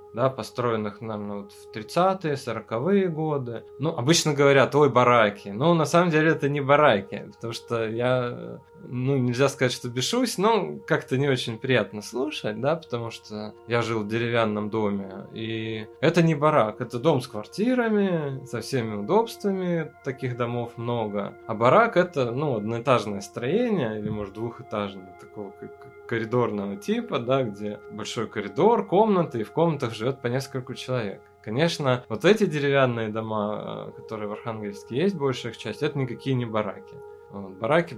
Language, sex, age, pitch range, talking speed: Russian, male, 20-39, 110-150 Hz, 155 wpm